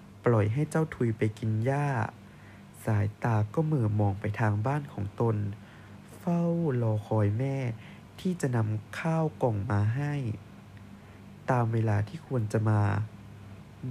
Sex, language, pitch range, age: male, Thai, 105-145 Hz, 20-39